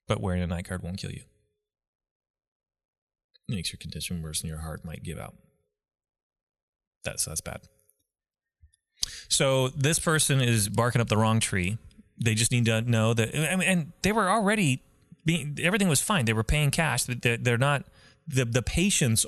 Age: 30-49